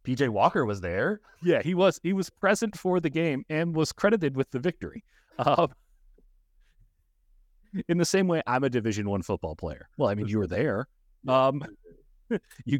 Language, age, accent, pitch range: English, 40-59, American, 105-175 Hz